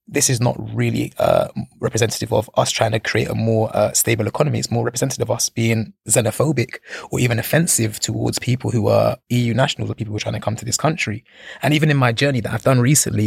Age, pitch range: 20-39, 110-135 Hz